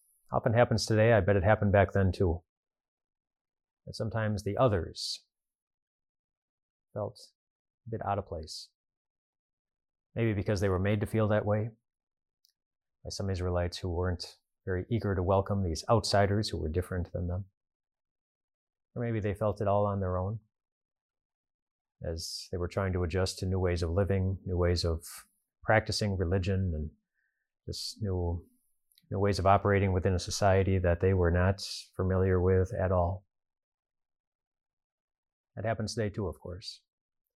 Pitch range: 90-105 Hz